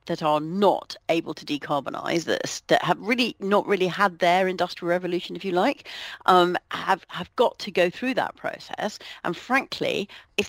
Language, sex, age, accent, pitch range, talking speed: English, female, 40-59, British, 155-205 Hz, 175 wpm